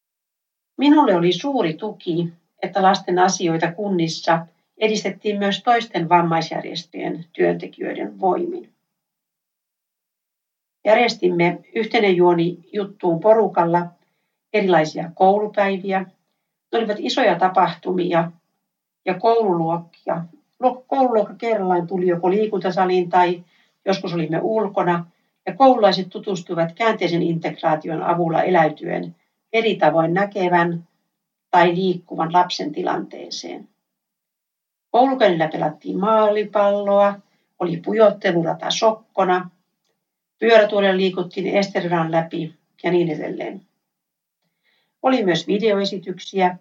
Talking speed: 85 wpm